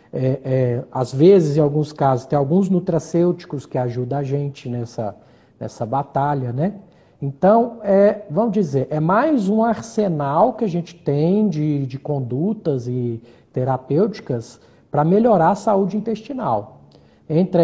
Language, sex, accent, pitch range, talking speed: Portuguese, male, Brazilian, 135-165 Hz, 130 wpm